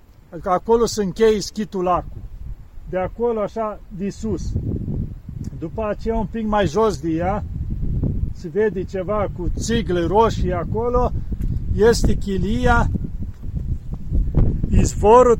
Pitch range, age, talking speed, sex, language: 135-220 Hz, 50-69, 105 wpm, male, Romanian